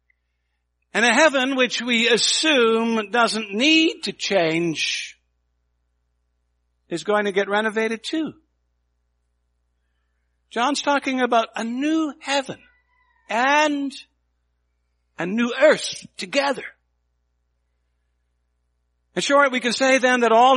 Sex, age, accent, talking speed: male, 60-79, American, 100 wpm